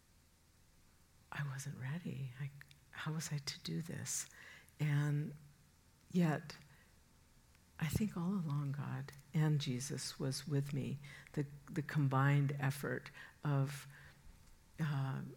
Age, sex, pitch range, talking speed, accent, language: 60-79, female, 135-155 Hz, 110 wpm, American, English